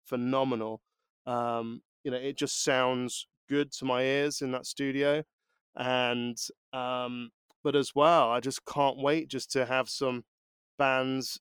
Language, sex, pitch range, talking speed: English, male, 120-145 Hz, 145 wpm